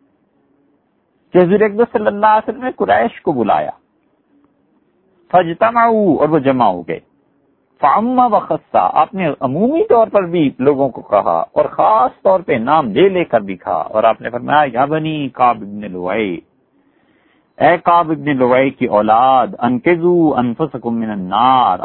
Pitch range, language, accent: 125-190 Hz, English, Indian